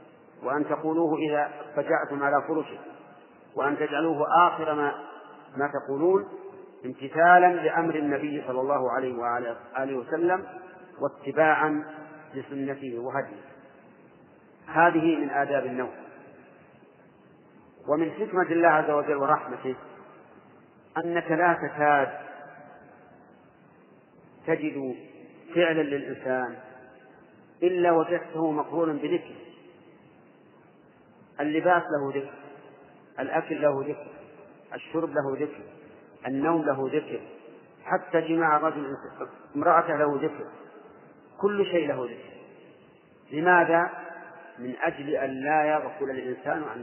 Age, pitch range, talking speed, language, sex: 40-59, 140-165 Hz, 95 wpm, Arabic, male